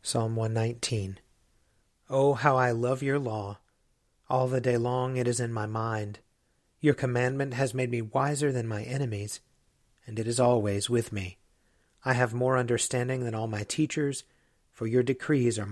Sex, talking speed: male, 170 wpm